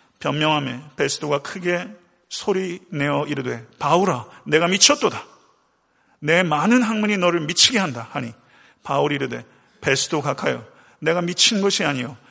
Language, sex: Korean, male